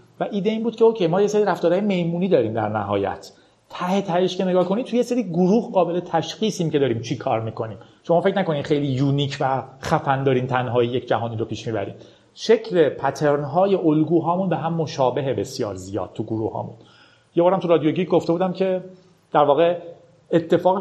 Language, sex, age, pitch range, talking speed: Persian, male, 40-59, 135-185 Hz, 190 wpm